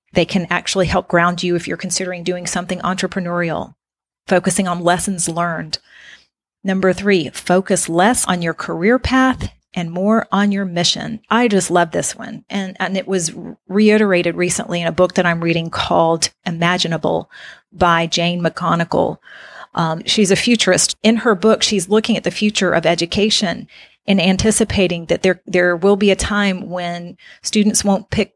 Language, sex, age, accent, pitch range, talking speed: English, female, 40-59, American, 175-200 Hz, 165 wpm